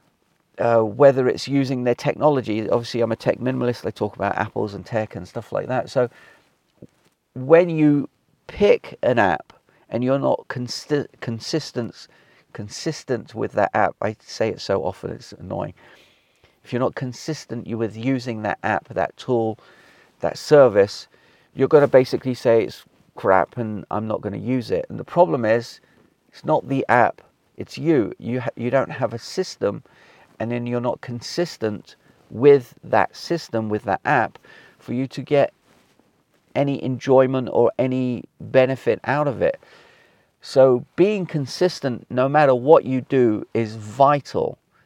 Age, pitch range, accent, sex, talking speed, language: 40-59, 115-140 Hz, British, male, 160 wpm, English